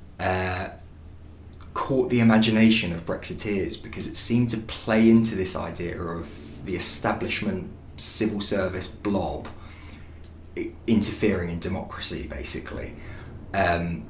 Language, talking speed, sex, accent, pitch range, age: English, 105 wpm, male, British, 85-105 Hz, 20-39